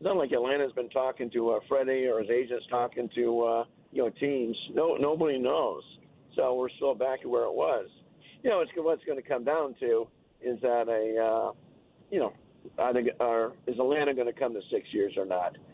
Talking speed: 215 wpm